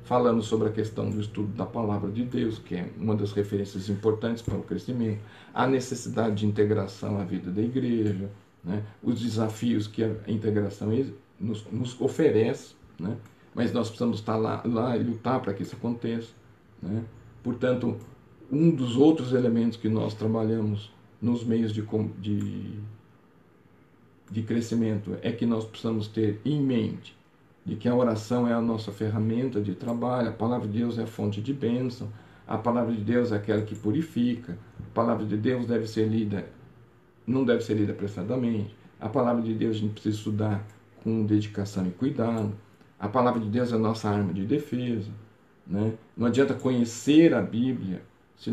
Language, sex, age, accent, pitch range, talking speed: Portuguese, male, 40-59, Brazilian, 105-120 Hz, 170 wpm